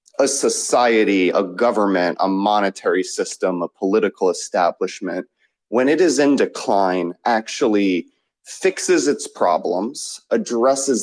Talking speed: 110 wpm